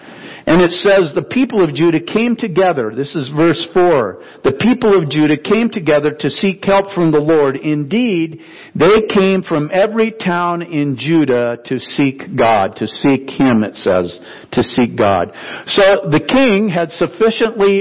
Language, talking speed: English, 165 wpm